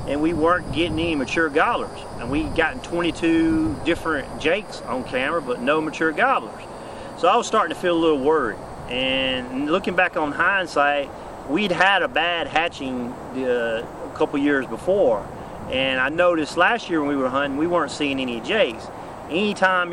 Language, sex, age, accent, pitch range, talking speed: English, male, 30-49, American, 140-180 Hz, 175 wpm